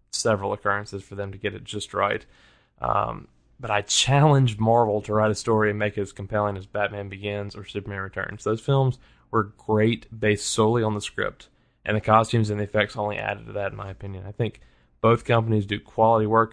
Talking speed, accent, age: 210 wpm, American, 20-39